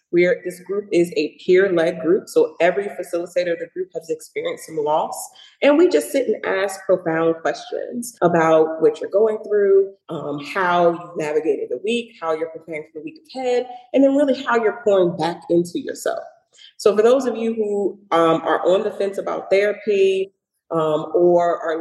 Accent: American